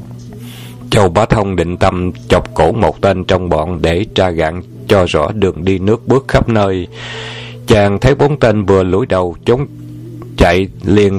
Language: Vietnamese